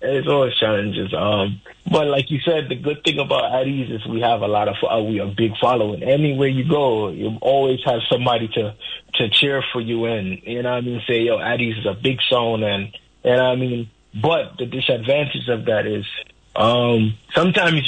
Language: English